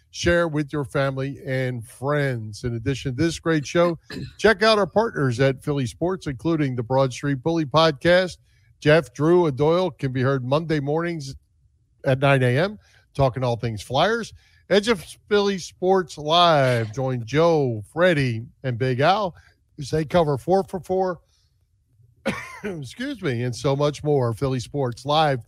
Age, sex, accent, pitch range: 50-69, male, American, 125-165 Hz